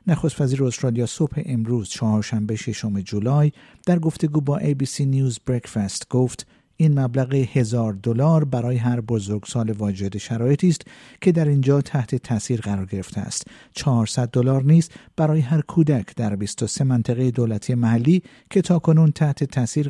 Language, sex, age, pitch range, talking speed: Persian, male, 50-69, 115-150 Hz, 155 wpm